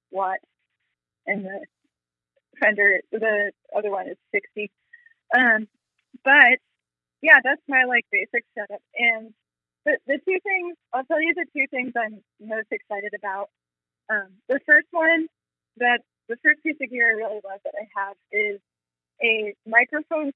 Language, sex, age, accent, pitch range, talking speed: English, female, 20-39, American, 205-280 Hz, 155 wpm